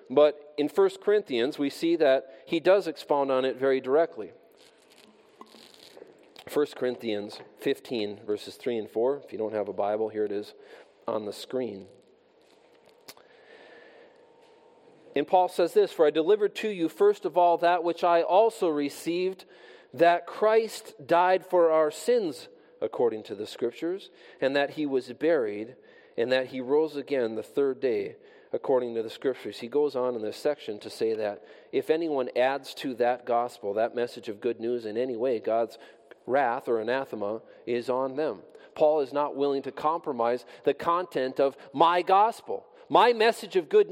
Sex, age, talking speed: male, 40-59, 165 wpm